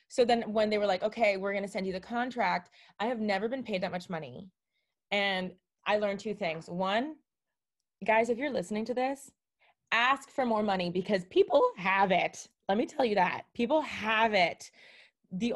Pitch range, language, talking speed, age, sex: 175-225 Hz, English, 195 wpm, 20-39, female